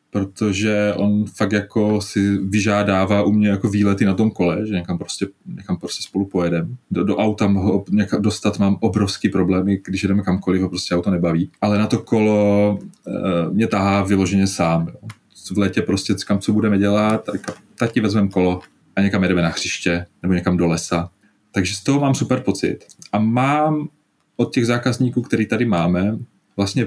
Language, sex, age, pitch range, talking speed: Czech, male, 30-49, 100-115 Hz, 180 wpm